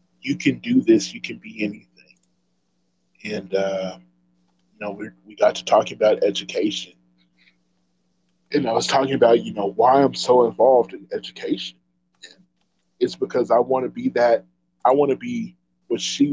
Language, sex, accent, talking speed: English, male, American, 165 wpm